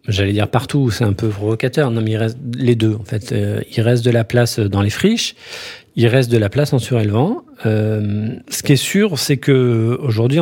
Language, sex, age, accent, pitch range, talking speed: French, male, 40-59, French, 105-130 Hz, 225 wpm